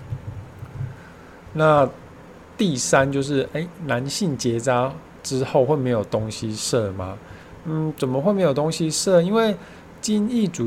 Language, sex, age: Chinese, male, 20-39